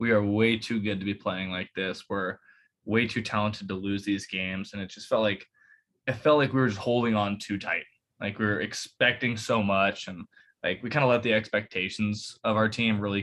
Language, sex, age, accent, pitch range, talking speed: English, male, 20-39, American, 100-110 Hz, 230 wpm